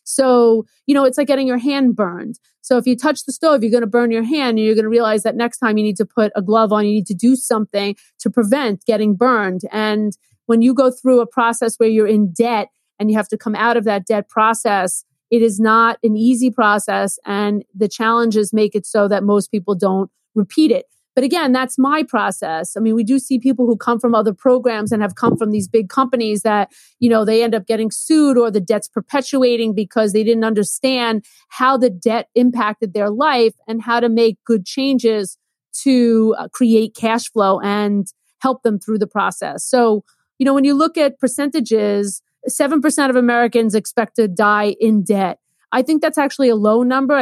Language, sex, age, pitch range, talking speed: English, female, 30-49, 215-250 Hz, 215 wpm